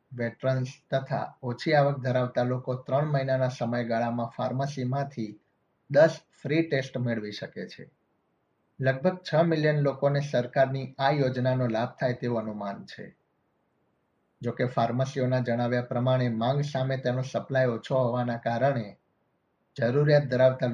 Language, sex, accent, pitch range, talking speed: Gujarati, male, native, 120-135 Hz, 80 wpm